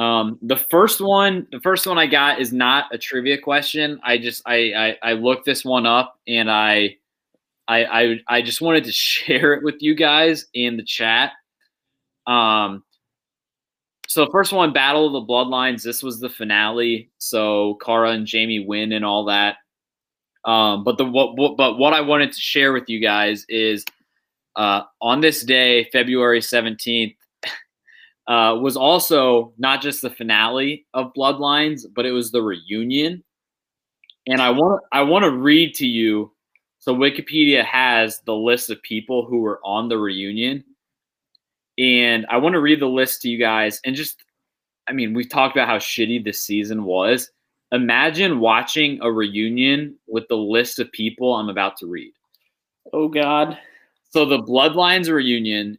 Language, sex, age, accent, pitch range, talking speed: English, male, 20-39, American, 110-145 Hz, 170 wpm